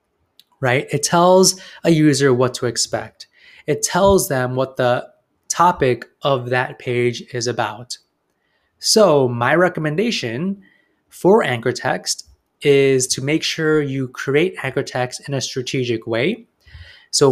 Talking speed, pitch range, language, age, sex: 130 wpm, 125-170 Hz, English, 20-39, male